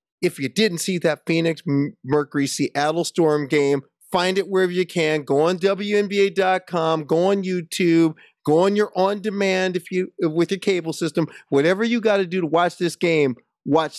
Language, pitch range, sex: English, 145-185 Hz, male